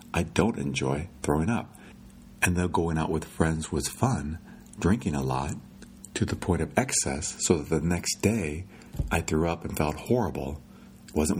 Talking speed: 175 wpm